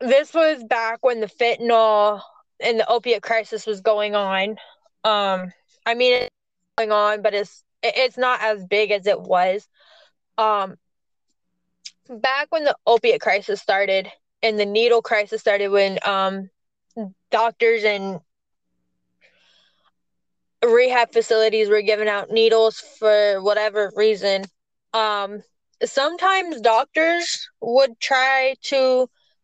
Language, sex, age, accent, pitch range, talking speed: English, female, 10-29, American, 210-255 Hz, 120 wpm